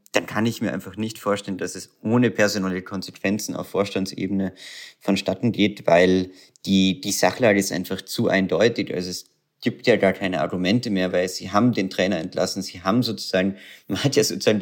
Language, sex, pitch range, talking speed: German, male, 95-115 Hz, 185 wpm